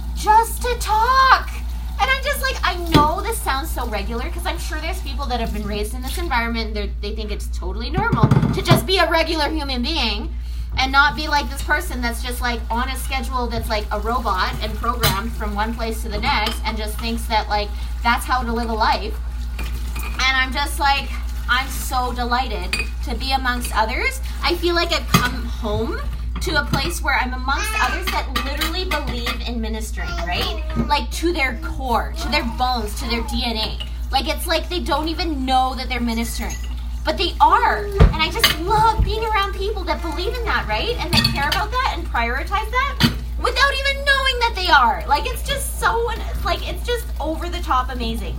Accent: American